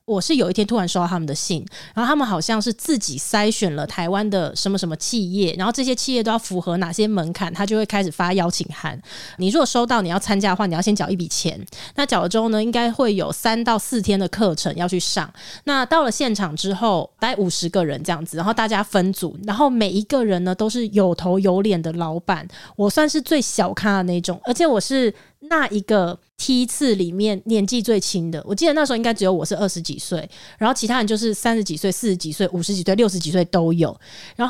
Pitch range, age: 180-235 Hz, 20-39